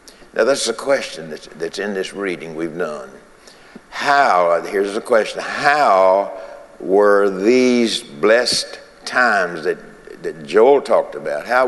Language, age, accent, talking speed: English, 60-79, American, 135 wpm